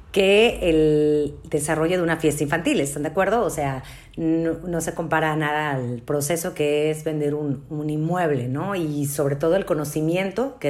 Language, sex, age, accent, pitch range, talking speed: Spanish, female, 40-59, Mexican, 155-200 Hz, 180 wpm